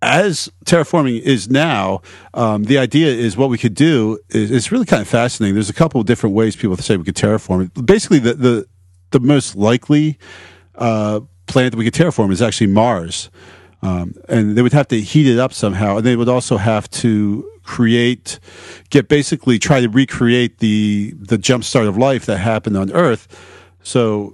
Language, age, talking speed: English, 40-59, 185 wpm